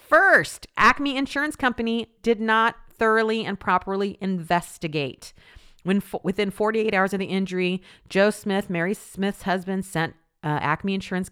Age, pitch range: 40-59, 155-210 Hz